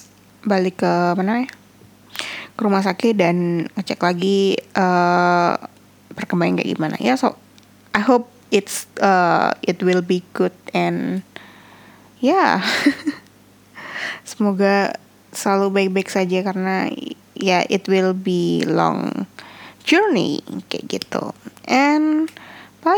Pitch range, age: 175-215 Hz, 20-39